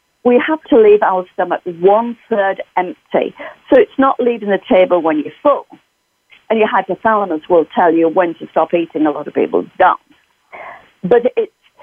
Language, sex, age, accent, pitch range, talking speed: English, female, 50-69, British, 195-285 Hz, 180 wpm